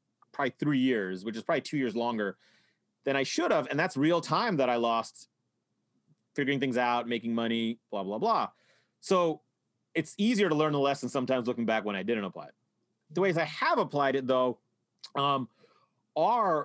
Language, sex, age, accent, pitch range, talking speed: English, male, 30-49, American, 115-155 Hz, 185 wpm